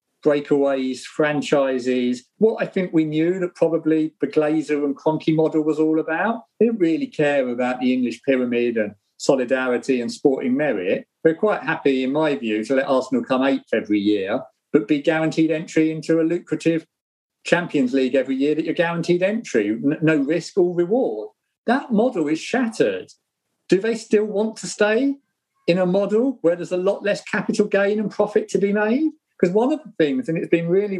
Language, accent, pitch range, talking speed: English, British, 145-210 Hz, 190 wpm